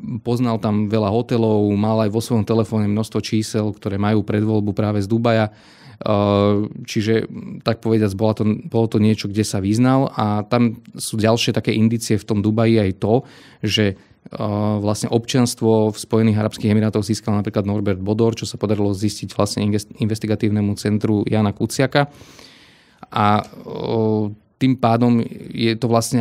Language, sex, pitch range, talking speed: Slovak, male, 105-115 Hz, 145 wpm